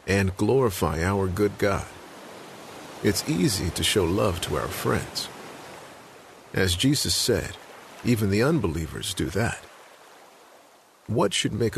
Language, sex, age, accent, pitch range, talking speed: English, male, 50-69, American, 85-115 Hz, 120 wpm